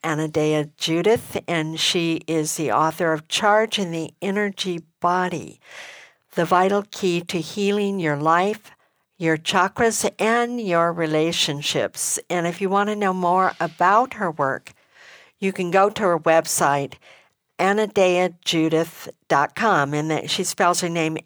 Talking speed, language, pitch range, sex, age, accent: 135 wpm, English, 160-195 Hz, female, 60-79, American